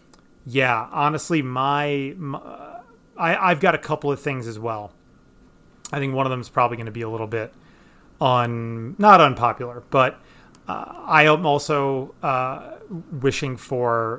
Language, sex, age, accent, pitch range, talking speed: English, male, 30-49, American, 120-145 Hz, 155 wpm